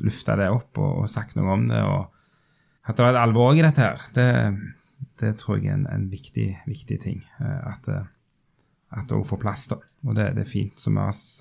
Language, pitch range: English, 105-145 Hz